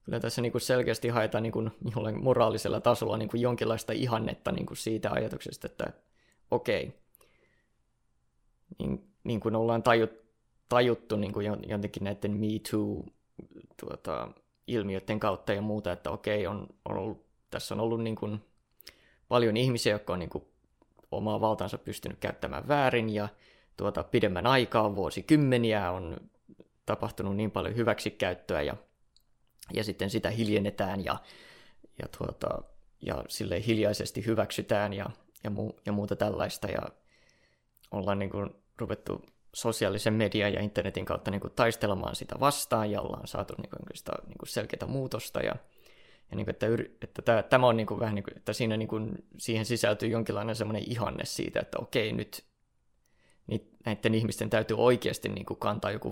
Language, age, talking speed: Finnish, 20-39, 135 wpm